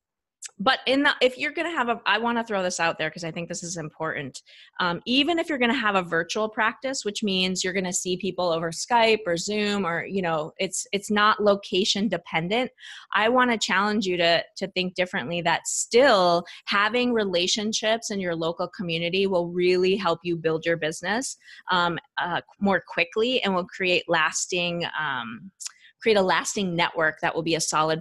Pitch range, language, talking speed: 170-210 Hz, English, 200 wpm